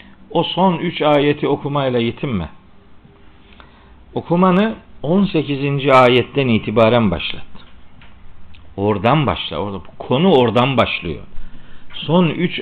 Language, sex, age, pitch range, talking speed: Turkish, male, 50-69, 110-175 Hz, 85 wpm